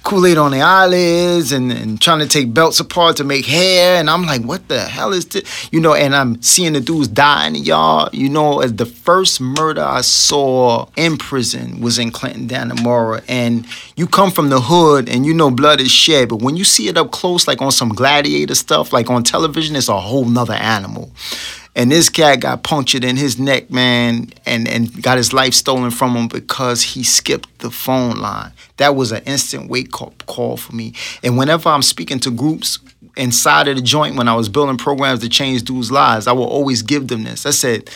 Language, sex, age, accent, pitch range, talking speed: English, male, 30-49, American, 120-155 Hz, 215 wpm